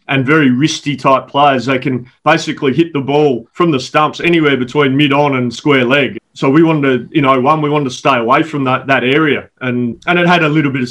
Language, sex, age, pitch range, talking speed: English, male, 30-49, 130-150 Hz, 235 wpm